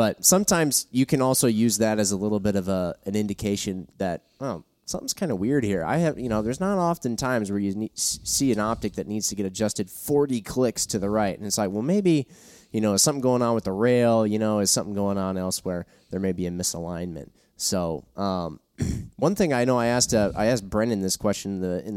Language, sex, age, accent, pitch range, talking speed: English, male, 20-39, American, 100-125 Hz, 235 wpm